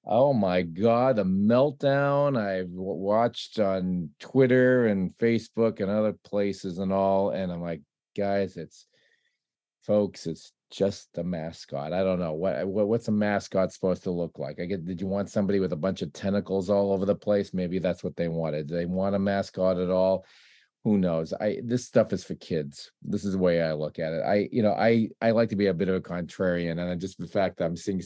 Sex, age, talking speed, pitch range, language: male, 40-59, 215 wpm, 90-115 Hz, English